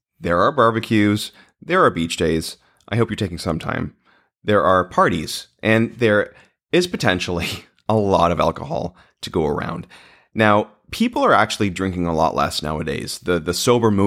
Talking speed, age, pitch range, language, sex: 165 wpm, 30-49, 85-110 Hz, English, male